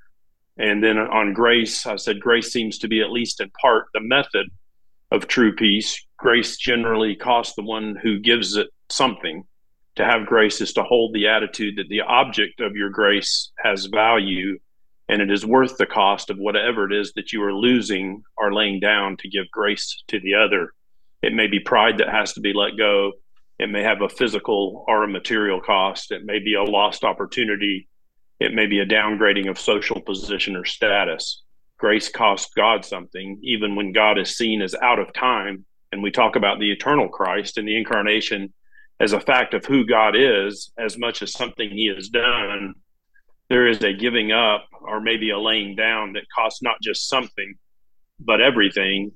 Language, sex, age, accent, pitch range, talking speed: English, male, 40-59, American, 100-115 Hz, 190 wpm